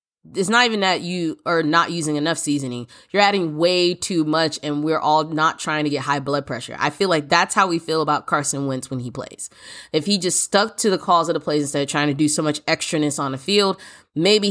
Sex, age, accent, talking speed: female, 20-39, American, 250 wpm